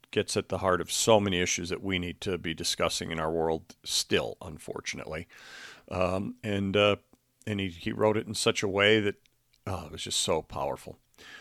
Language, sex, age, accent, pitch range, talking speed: English, male, 50-69, American, 100-130 Hz, 200 wpm